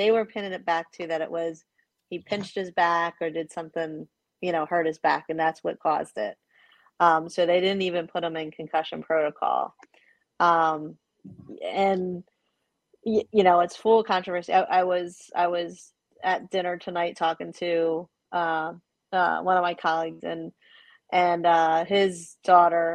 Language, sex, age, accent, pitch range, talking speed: English, female, 30-49, American, 165-180 Hz, 170 wpm